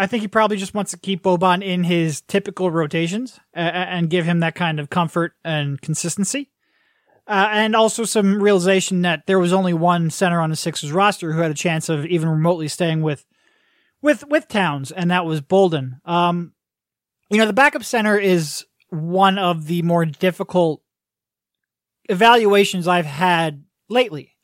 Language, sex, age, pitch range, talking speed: English, male, 20-39, 165-205 Hz, 170 wpm